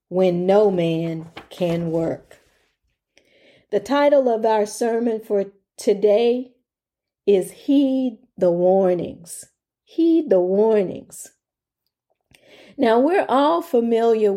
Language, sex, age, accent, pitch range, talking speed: English, female, 40-59, American, 200-240 Hz, 95 wpm